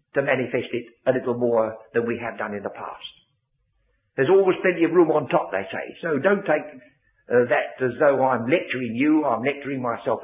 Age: 60-79